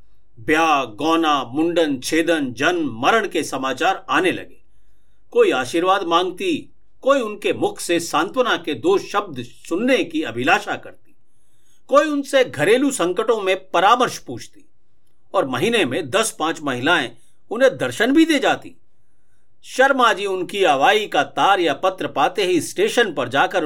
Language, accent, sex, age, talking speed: Hindi, native, male, 50-69, 140 wpm